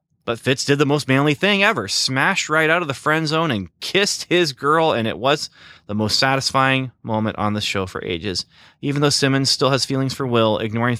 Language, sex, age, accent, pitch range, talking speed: English, male, 20-39, American, 105-135 Hz, 220 wpm